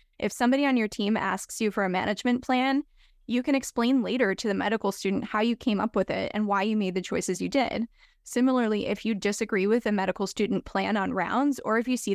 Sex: female